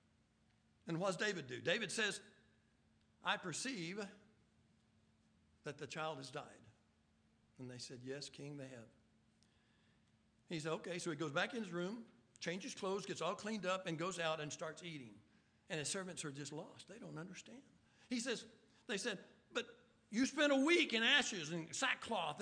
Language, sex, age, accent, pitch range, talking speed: English, male, 60-79, American, 135-220 Hz, 175 wpm